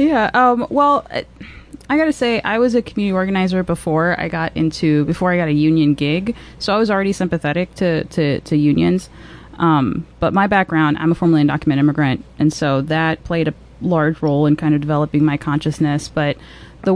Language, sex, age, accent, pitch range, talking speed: English, female, 20-39, American, 150-190 Hz, 190 wpm